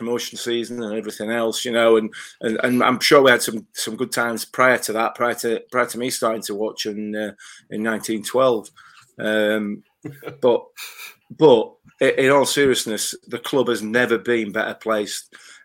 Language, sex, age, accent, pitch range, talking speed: English, male, 30-49, British, 105-120 Hz, 175 wpm